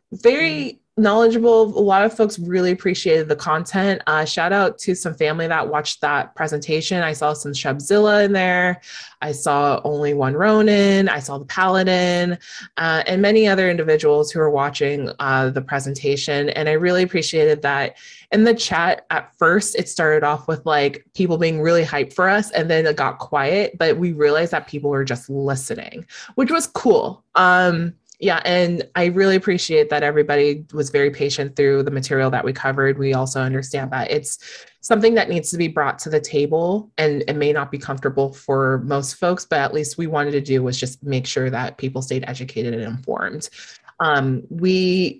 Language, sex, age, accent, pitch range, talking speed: English, female, 20-39, American, 140-180 Hz, 185 wpm